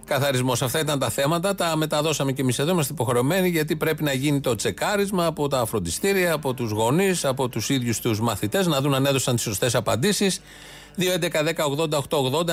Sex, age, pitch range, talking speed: male, 30-49, 120-155 Hz, 175 wpm